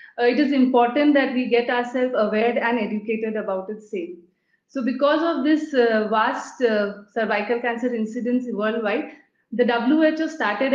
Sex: female